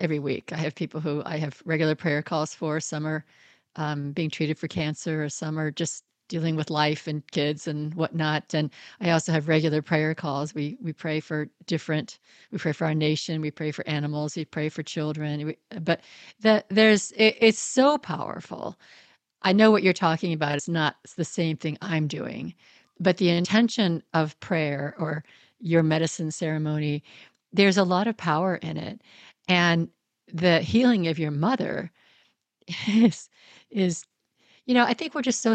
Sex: female